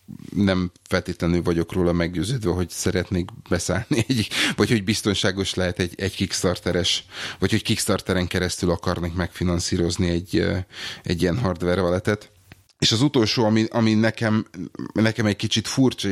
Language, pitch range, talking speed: Hungarian, 90-105 Hz, 140 wpm